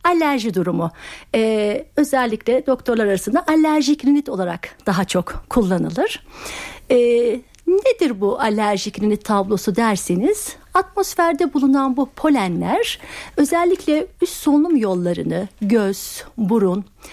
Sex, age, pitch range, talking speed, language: female, 60-79, 205-290 Hz, 100 wpm, Turkish